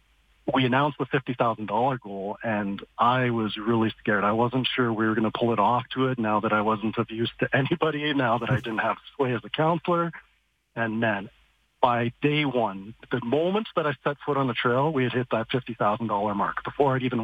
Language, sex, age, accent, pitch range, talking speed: English, male, 40-59, American, 110-140 Hz, 230 wpm